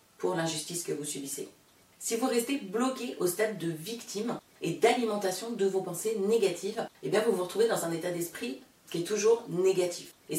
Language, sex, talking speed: French, female, 190 wpm